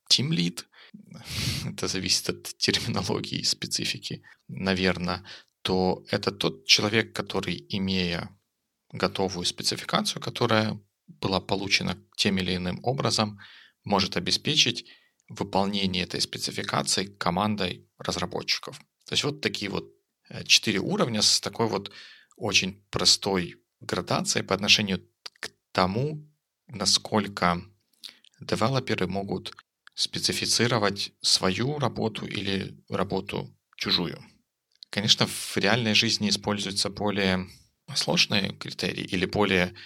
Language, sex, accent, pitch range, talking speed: Russian, male, native, 95-105 Hz, 100 wpm